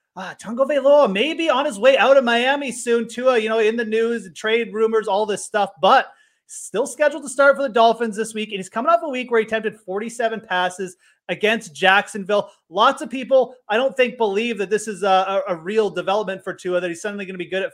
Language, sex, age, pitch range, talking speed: English, male, 30-49, 185-230 Hz, 235 wpm